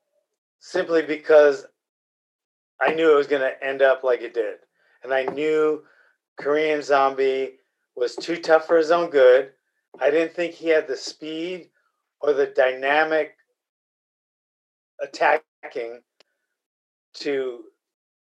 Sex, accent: male, American